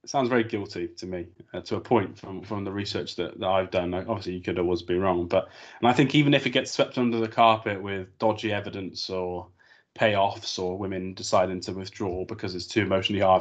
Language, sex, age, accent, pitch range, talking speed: English, male, 20-39, British, 95-115 Hz, 230 wpm